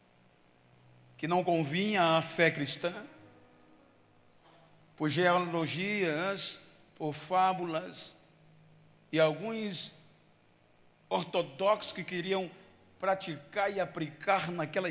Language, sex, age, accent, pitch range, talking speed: Portuguese, male, 60-79, Brazilian, 150-195 Hz, 75 wpm